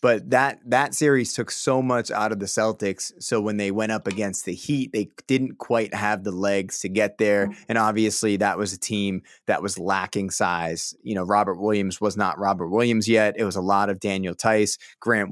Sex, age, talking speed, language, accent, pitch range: male, 20-39, 215 wpm, English, American, 100-115 Hz